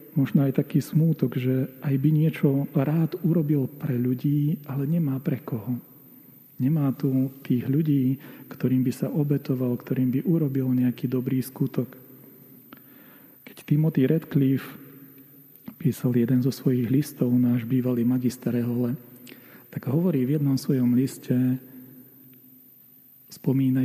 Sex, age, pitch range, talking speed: male, 40-59, 125-140 Hz, 125 wpm